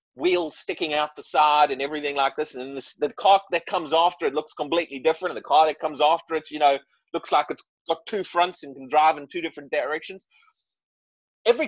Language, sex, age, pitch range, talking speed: English, male, 30-49, 150-235 Hz, 215 wpm